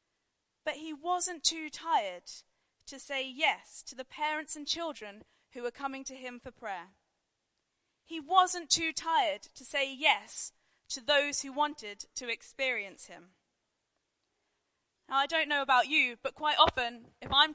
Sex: female